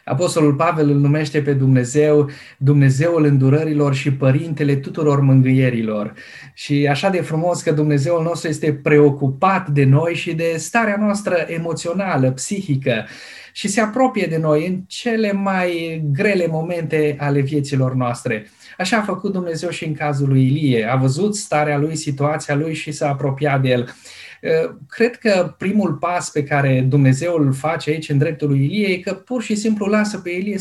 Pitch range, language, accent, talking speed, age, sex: 140-175 Hz, Romanian, native, 165 wpm, 20-39, male